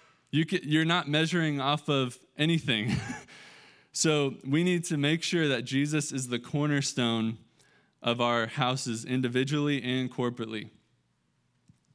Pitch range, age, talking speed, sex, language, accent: 120-150 Hz, 20-39, 115 wpm, male, English, American